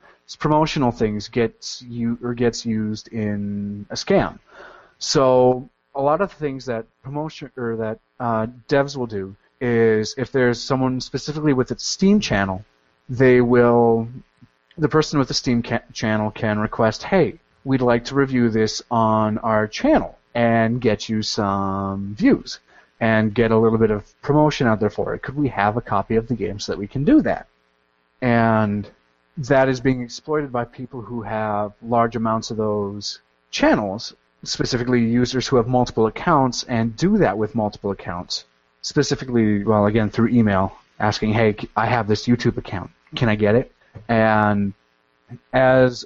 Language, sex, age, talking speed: English, male, 30-49, 165 wpm